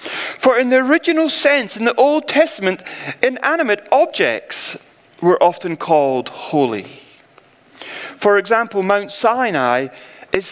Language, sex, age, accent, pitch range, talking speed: English, male, 40-59, British, 215-265 Hz, 115 wpm